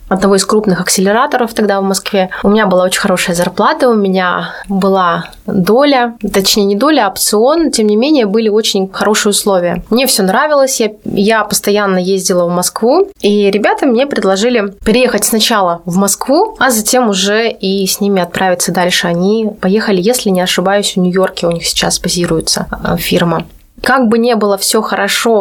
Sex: female